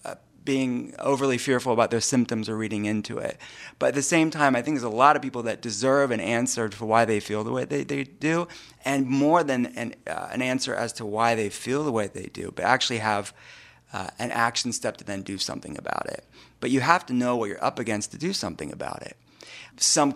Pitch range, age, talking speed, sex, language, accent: 110-130 Hz, 30-49, 235 wpm, male, English, American